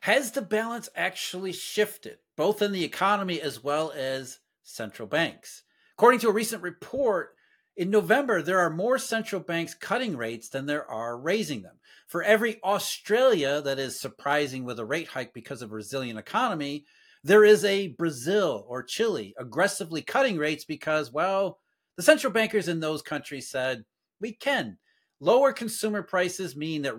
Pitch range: 145-220 Hz